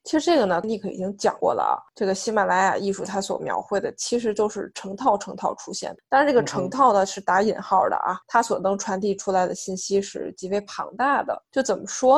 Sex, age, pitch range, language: female, 20-39, 190-245 Hz, Chinese